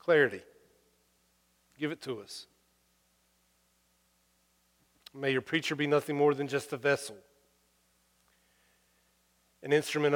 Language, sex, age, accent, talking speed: English, male, 40-59, American, 100 wpm